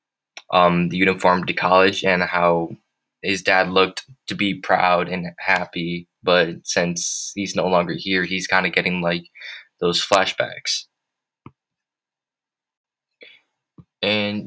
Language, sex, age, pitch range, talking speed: English, male, 20-39, 90-105 Hz, 120 wpm